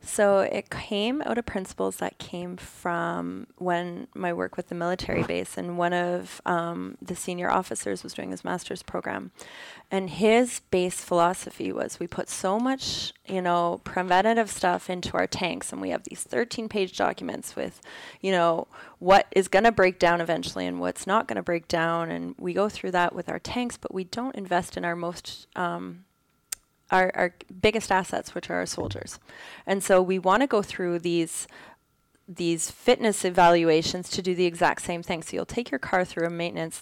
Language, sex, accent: English, female, American